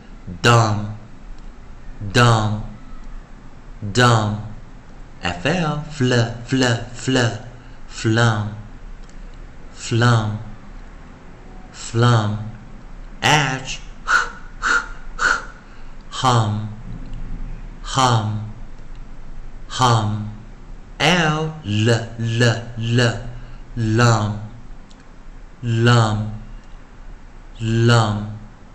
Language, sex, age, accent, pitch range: Chinese, male, 50-69, American, 105-125 Hz